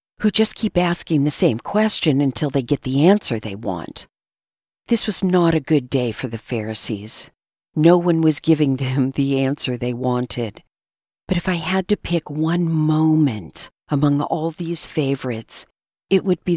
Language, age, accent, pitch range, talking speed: English, 50-69, American, 135-175 Hz, 170 wpm